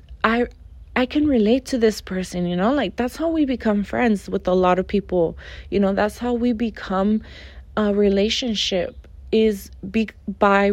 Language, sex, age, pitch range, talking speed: English, female, 20-39, 195-250 Hz, 170 wpm